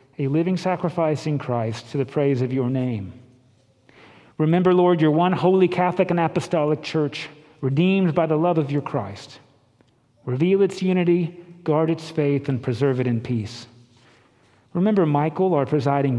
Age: 40-59